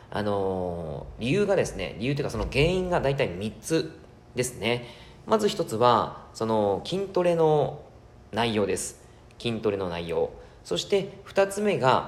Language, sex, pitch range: Japanese, male, 110-170 Hz